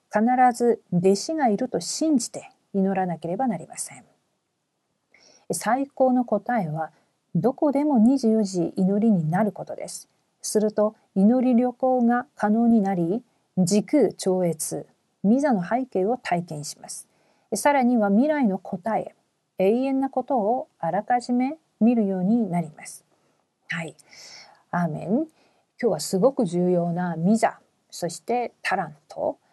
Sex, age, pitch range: female, 50-69, 180-245 Hz